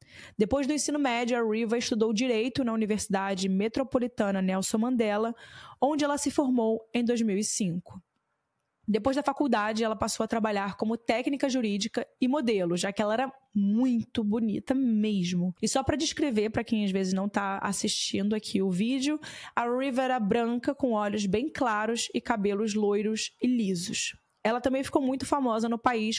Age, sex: 20-39, female